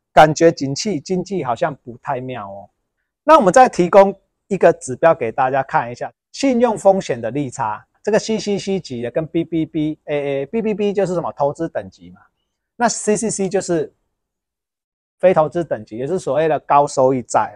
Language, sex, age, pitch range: Chinese, male, 30-49, 130-185 Hz